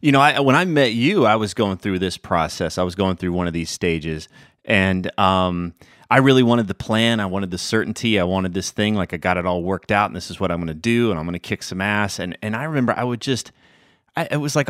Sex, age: male, 30-49